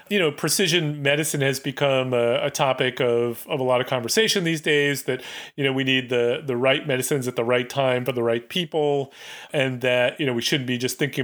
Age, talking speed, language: 30-49, 230 wpm, English